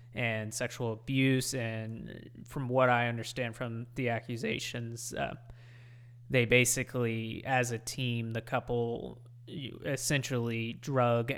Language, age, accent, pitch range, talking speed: English, 20-39, American, 115-130 Hz, 110 wpm